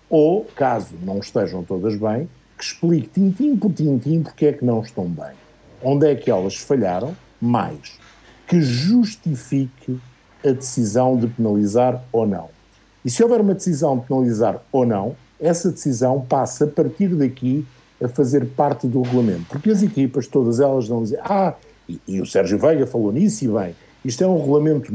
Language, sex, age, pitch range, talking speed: Portuguese, male, 50-69, 120-150 Hz, 175 wpm